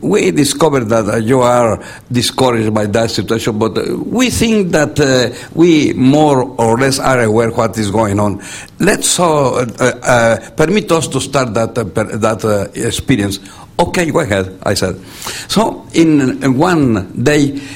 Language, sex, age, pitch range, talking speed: English, male, 60-79, 110-135 Hz, 170 wpm